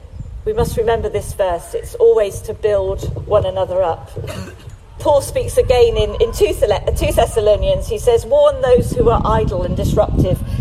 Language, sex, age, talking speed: English, female, 40-59, 160 wpm